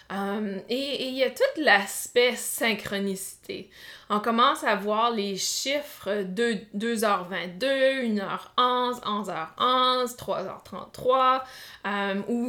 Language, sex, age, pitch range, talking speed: French, female, 20-39, 200-260 Hz, 100 wpm